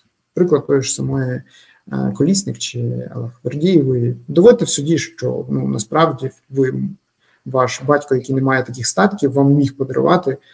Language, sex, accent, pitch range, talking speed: Ukrainian, male, native, 135-170 Hz, 140 wpm